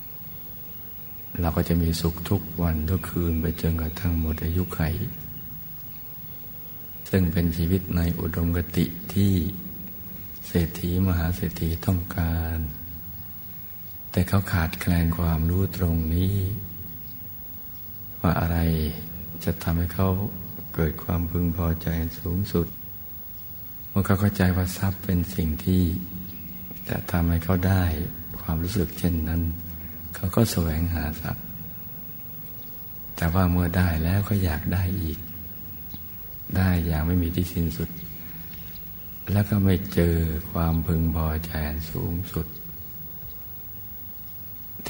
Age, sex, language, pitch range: 60-79, male, Thai, 85-95 Hz